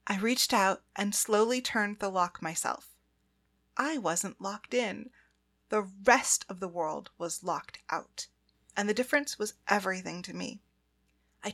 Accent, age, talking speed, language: American, 30-49, 150 wpm, English